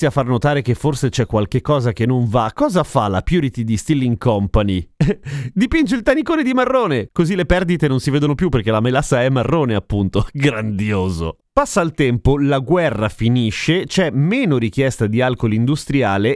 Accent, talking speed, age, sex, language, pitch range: native, 180 wpm, 30-49, male, Italian, 105-150 Hz